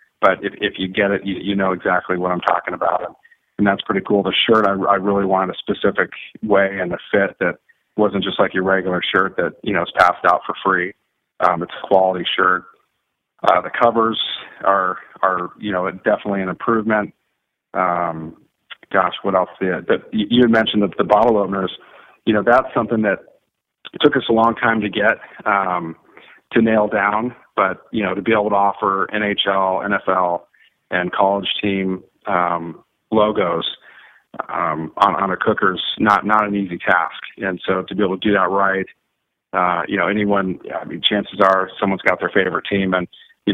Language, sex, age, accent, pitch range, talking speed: English, male, 40-59, American, 95-105 Hz, 195 wpm